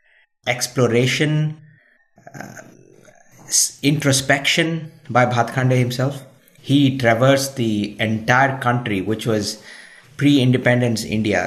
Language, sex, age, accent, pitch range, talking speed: English, male, 50-69, Indian, 115-145 Hz, 85 wpm